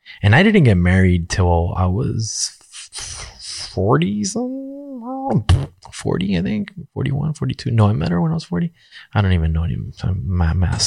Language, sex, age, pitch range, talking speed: English, male, 20-39, 90-115 Hz, 155 wpm